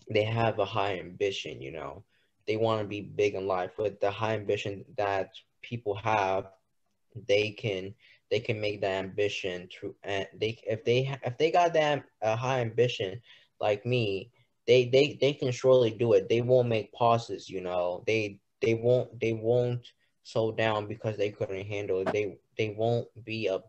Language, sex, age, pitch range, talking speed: English, male, 10-29, 100-120 Hz, 180 wpm